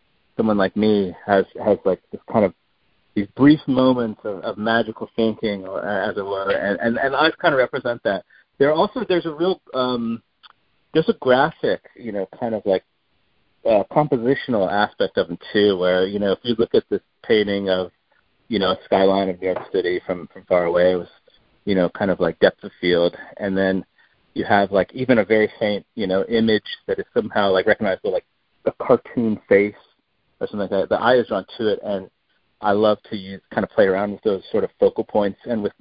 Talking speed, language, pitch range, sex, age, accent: 215 wpm, English, 95-120 Hz, male, 30-49, American